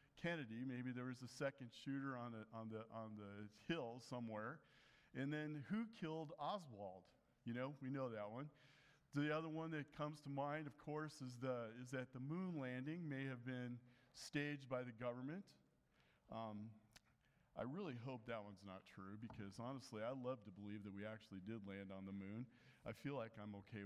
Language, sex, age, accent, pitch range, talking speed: English, male, 40-59, American, 115-145 Hz, 190 wpm